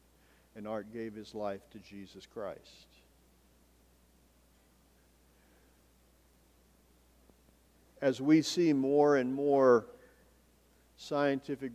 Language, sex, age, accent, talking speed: English, male, 50-69, American, 75 wpm